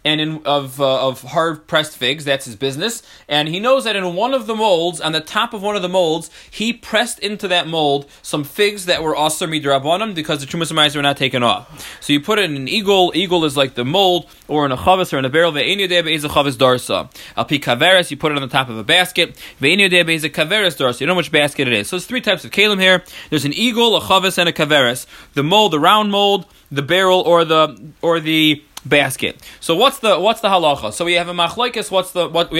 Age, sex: 20-39, male